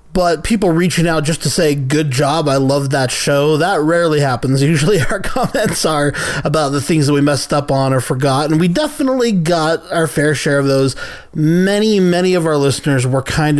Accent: American